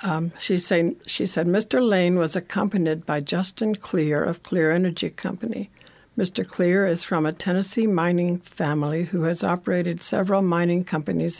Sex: female